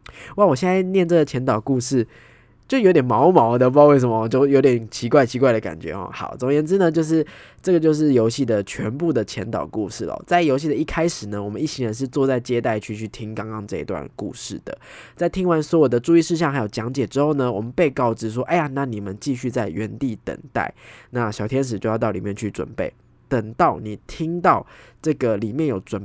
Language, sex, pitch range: Chinese, male, 110-145 Hz